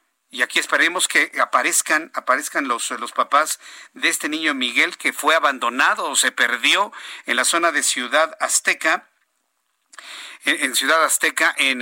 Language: Spanish